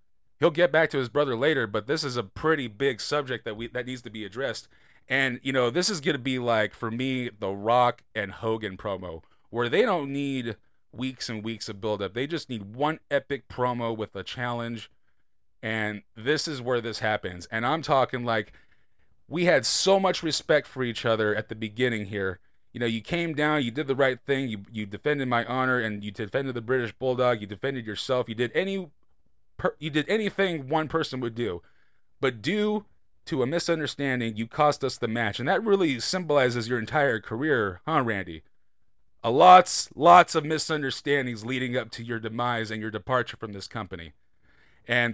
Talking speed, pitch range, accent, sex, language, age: 195 wpm, 115-145 Hz, American, male, English, 30-49